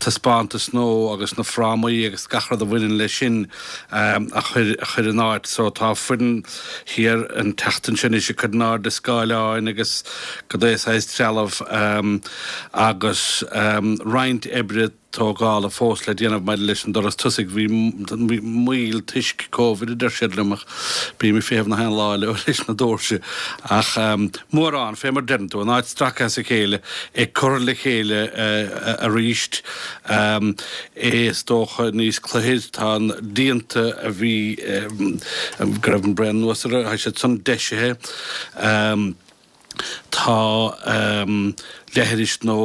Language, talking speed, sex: German, 80 wpm, male